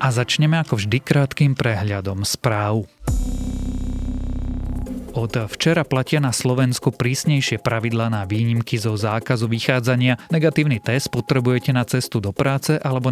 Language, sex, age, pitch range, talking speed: Slovak, male, 30-49, 110-130 Hz, 125 wpm